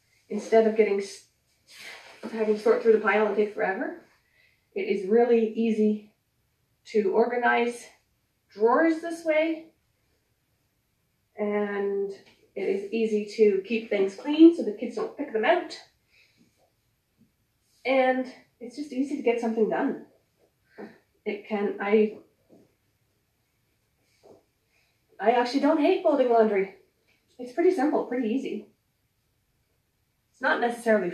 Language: English